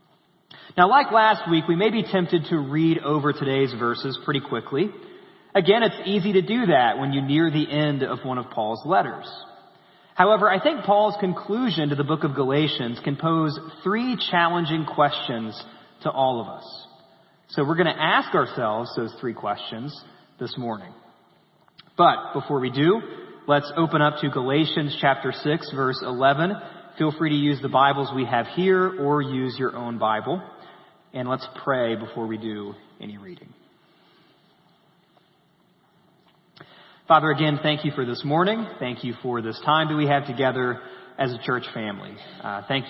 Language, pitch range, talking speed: English, 125-165 Hz, 165 wpm